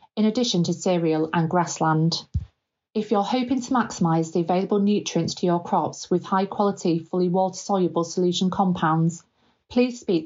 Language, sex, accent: English, female, British